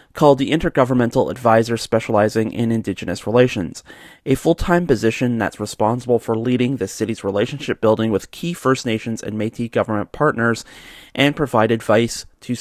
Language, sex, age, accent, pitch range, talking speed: English, male, 30-49, American, 110-135 Hz, 150 wpm